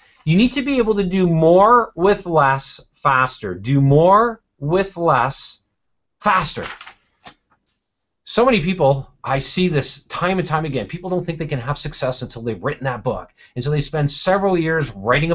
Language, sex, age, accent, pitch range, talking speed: English, male, 30-49, American, 130-170 Hz, 175 wpm